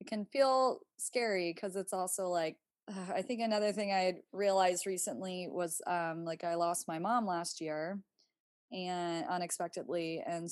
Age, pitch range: 20-39, 170-205 Hz